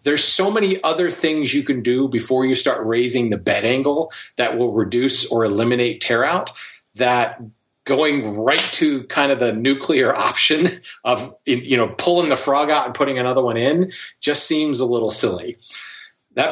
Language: English